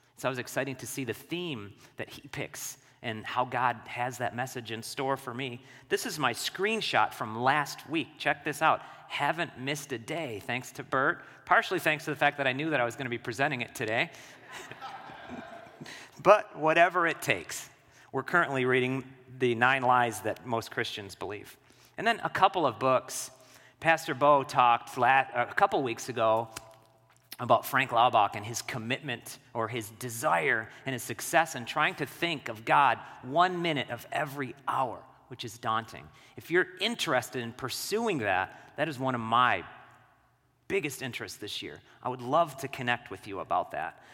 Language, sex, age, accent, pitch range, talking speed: English, male, 40-59, American, 120-145 Hz, 180 wpm